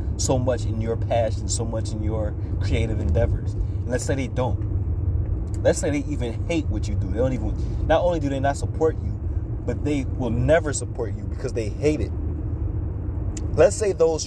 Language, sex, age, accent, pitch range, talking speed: English, male, 20-39, American, 90-105 Hz, 200 wpm